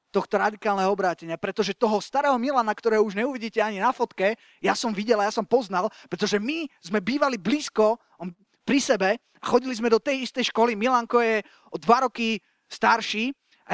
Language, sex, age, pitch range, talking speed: Slovak, male, 20-39, 195-245 Hz, 180 wpm